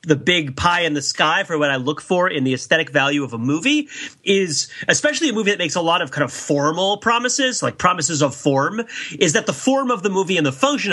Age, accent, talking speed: 30-49, American, 255 wpm